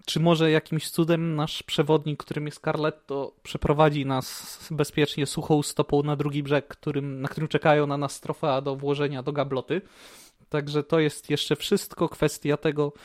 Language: Polish